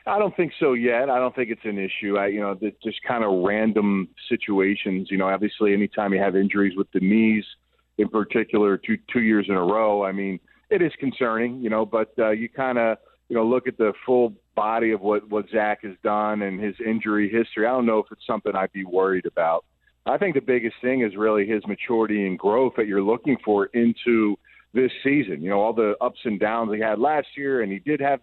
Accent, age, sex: American, 40-59, male